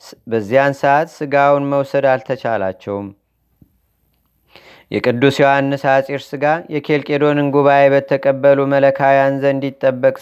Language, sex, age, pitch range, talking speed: Amharic, male, 30-49, 130-145 Hz, 90 wpm